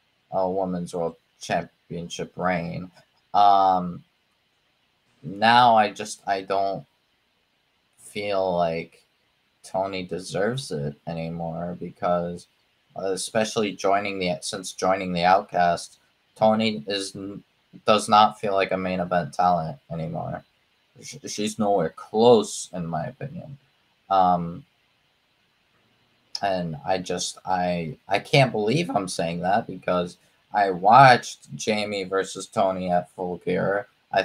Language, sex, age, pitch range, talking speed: English, male, 20-39, 90-105 Hz, 110 wpm